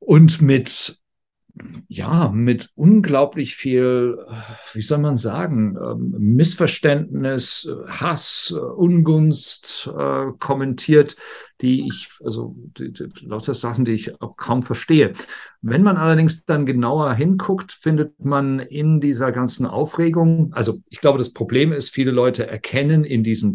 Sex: male